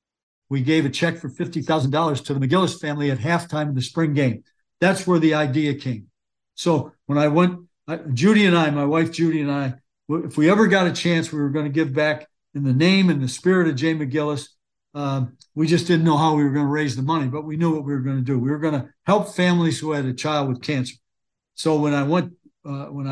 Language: English